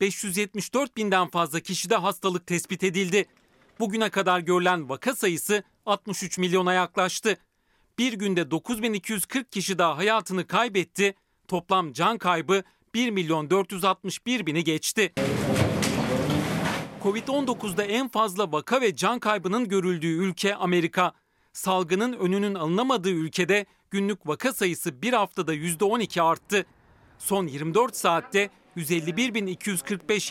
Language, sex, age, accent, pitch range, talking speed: Turkish, male, 40-59, native, 175-210 Hz, 105 wpm